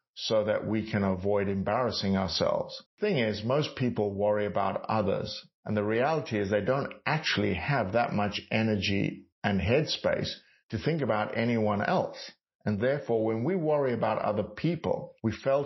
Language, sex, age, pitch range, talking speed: English, male, 50-69, 105-125 Hz, 160 wpm